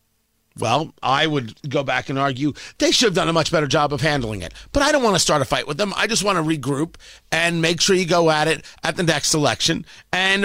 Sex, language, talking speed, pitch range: male, English, 260 wpm, 150-220 Hz